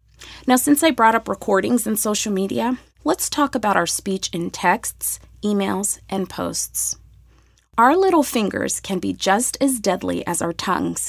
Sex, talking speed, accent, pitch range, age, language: female, 160 wpm, American, 190-260 Hz, 20-39, English